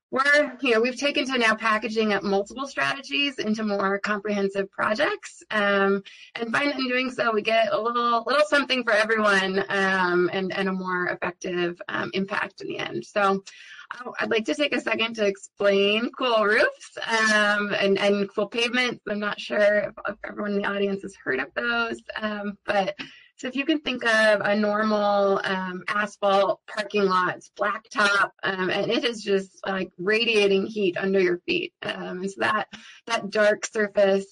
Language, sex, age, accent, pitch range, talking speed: English, female, 20-39, American, 195-230 Hz, 175 wpm